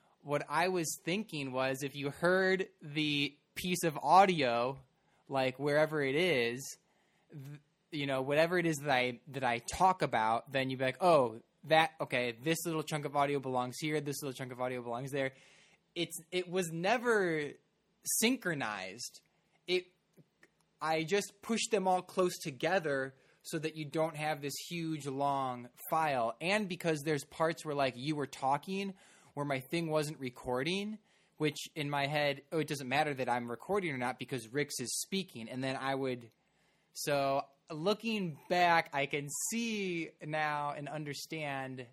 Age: 20-39